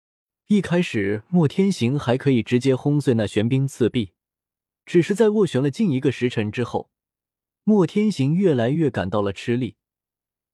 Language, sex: Chinese, male